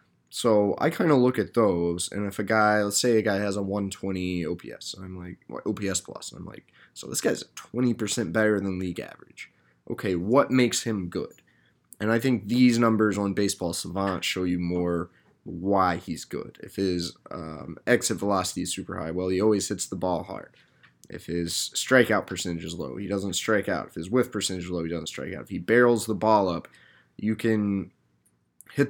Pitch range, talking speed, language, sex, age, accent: 90-105 Hz, 200 wpm, English, male, 20-39, American